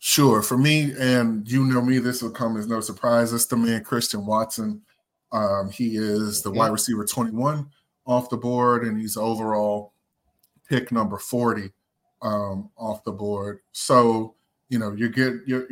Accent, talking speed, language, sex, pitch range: American, 170 wpm, English, male, 105-125 Hz